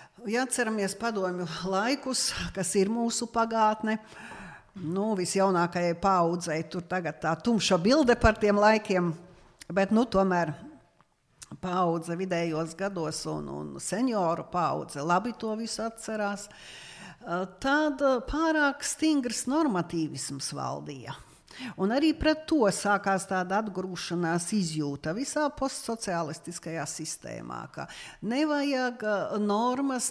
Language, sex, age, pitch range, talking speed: English, female, 50-69, 170-230 Hz, 100 wpm